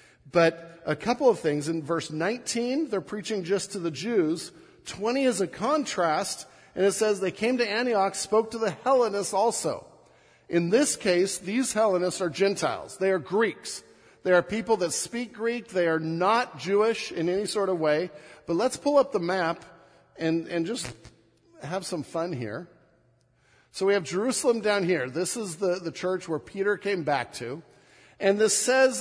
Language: English